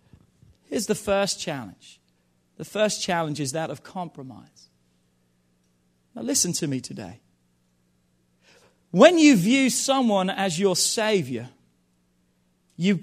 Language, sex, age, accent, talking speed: English, male, 40-59, British, 110 wpm